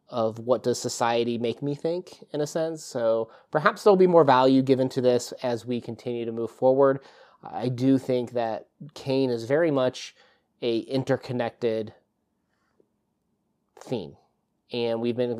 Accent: American